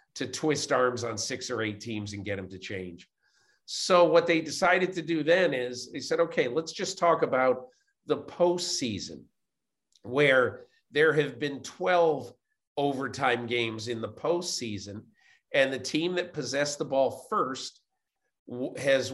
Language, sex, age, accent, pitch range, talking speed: English, male, 50-69, American, 120-160 Hz, 155 wpm